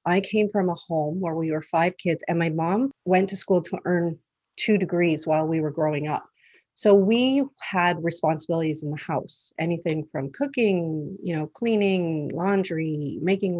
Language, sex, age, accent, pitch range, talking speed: English, female, 40-59, American, 155-195 Hz, 175 wpm